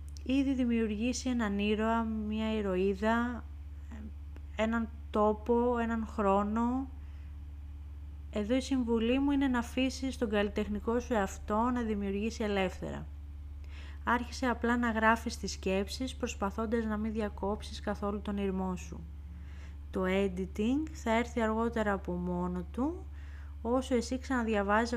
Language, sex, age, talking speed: Greek, female, 30-49, 120 wpm